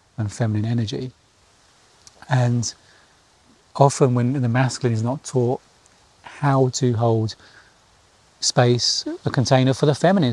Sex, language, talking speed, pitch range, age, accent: male, English, 115 wpm, 110-135 Hz, 30-49, British